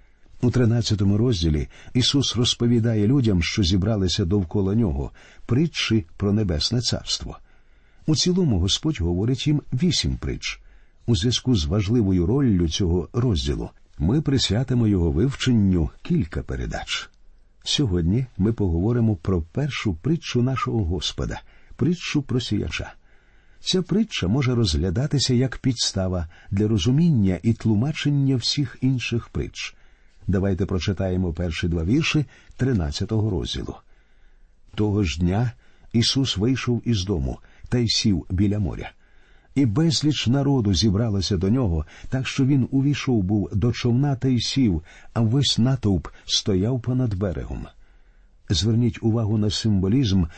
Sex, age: male, 50-69